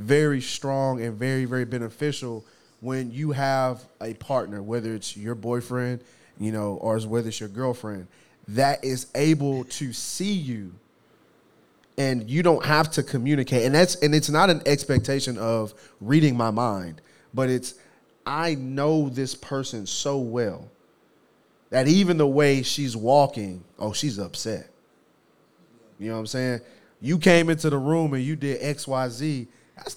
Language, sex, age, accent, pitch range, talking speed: English, male, 30-49, American, 120-150 Hz, 155 wpm